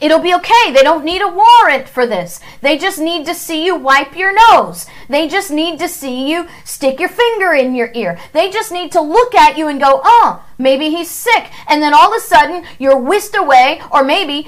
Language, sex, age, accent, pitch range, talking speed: English, female, 40-59, American, 235-330 Hz, 230 wpm